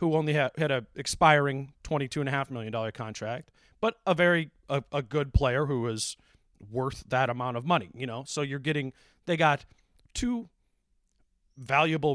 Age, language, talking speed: 30-49, English, 160 wpm